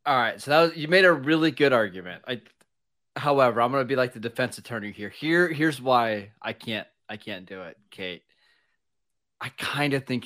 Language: English